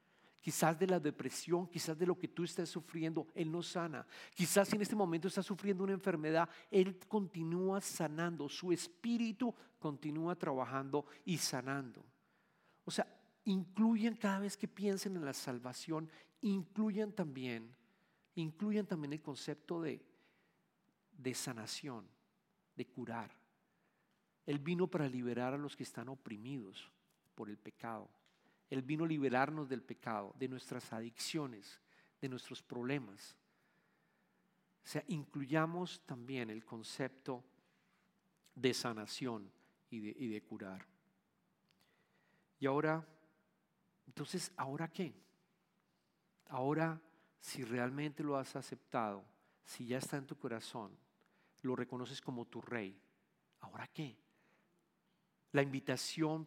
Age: 50-69